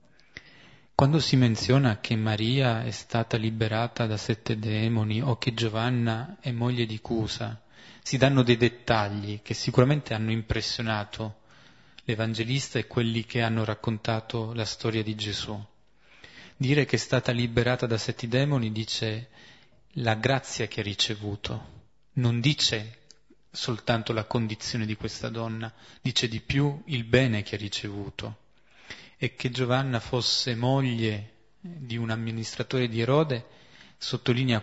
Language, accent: Italian, native